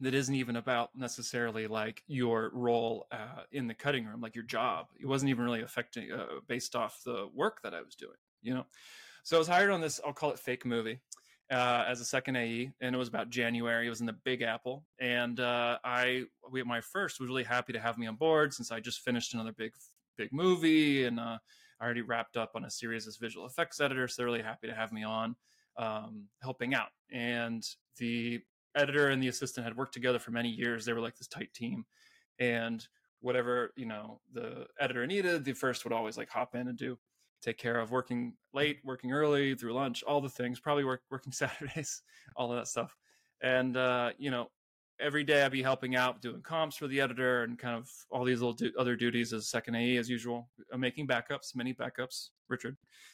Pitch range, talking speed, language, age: 115-135 Hz, 215 wpm, English, 20-39